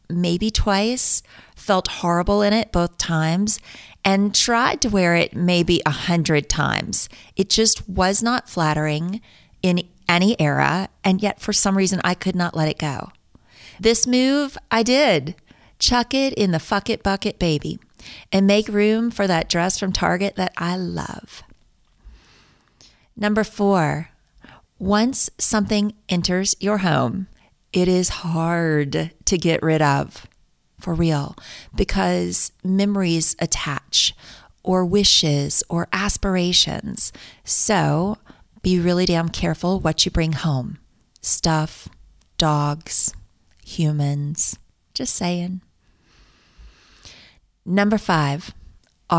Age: 40-59